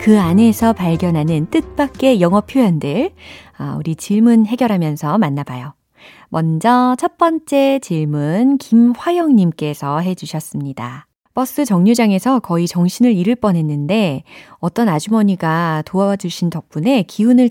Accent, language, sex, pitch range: native, Korean, female, 160-230 Hz